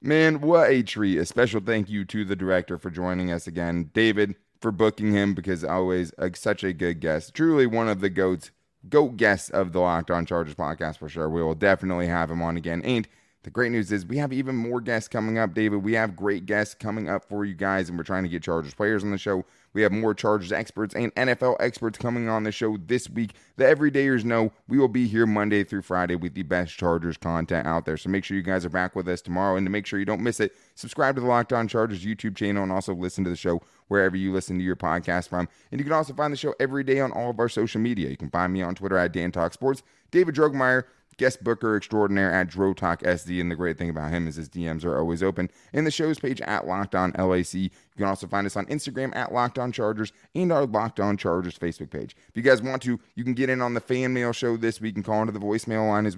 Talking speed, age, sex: 255 wpm, 20-39, male